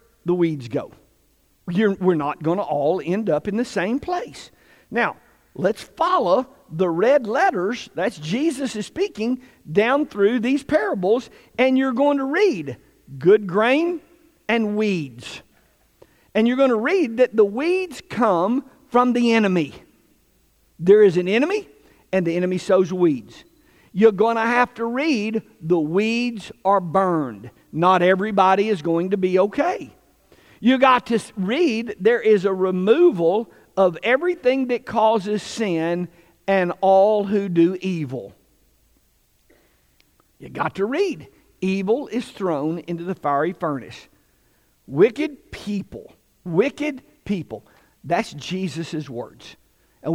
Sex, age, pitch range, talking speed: male, 50-69, 170-240 Hz, 135 wpm